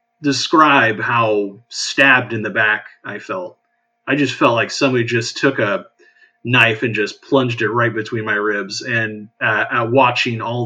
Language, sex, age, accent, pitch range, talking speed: English, male, 30-49, American, 110-170 Hz, 170 wpm